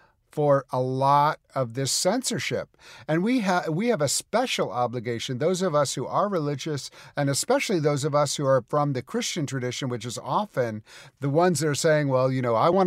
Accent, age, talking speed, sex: American, 50-69, 205 wpm, male